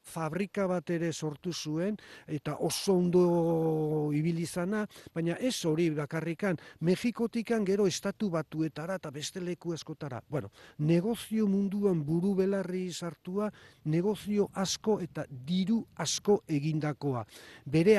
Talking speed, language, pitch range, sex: 115 wpm, Spanish, 155-190 Hz, male